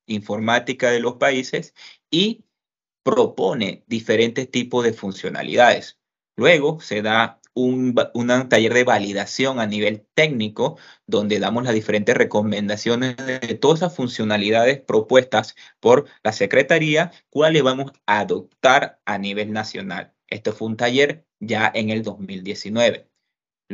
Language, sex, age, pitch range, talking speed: Spanish, male, 30-49, 110-135 Hz, 125 wpm